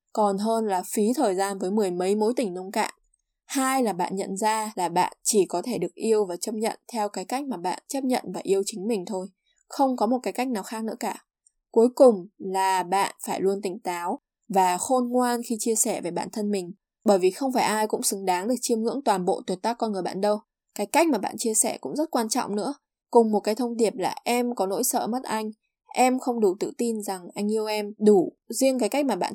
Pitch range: 195-245 Hz